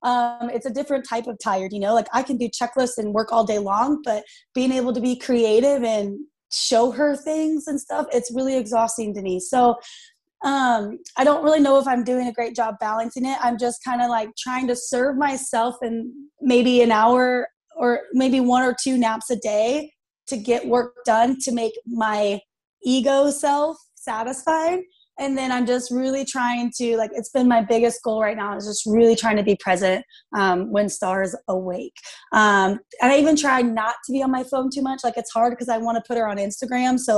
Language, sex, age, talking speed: English, female, 20-39, 210 wpm